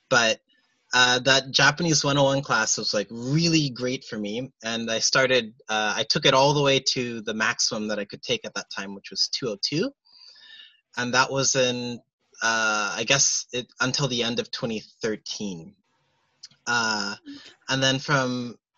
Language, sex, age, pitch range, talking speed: English, male, 20-39, 120-155 Hz, 165 wpm